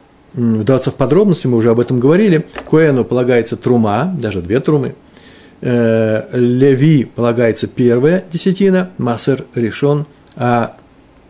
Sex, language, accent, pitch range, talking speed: male, Russian, native, 115-160 Hz, 110 wpm